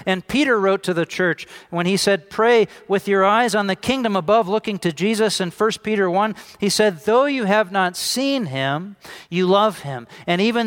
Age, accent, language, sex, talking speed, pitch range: 40-59, American, English, male, 210 wpm, 175-215 Hz